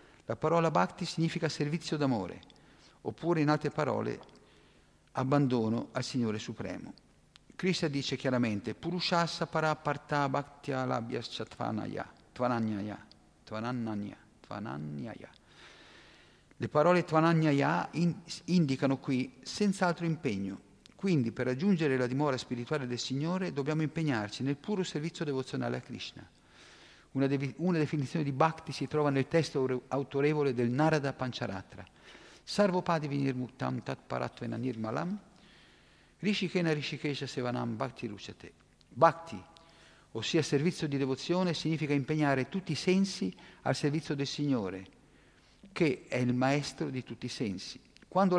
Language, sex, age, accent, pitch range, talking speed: Italian, male, 50-69, native, 125-160 Hz, 120 wpm